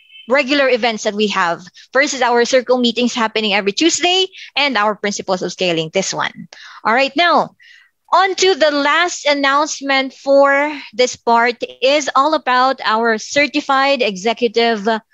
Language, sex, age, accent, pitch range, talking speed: Filipino, female, 20-39, native, 215-275 Hz, 145 wpm